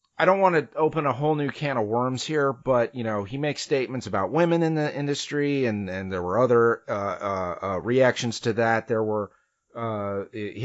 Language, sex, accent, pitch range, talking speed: English, male, American, 120-175 Hz, 205 wpm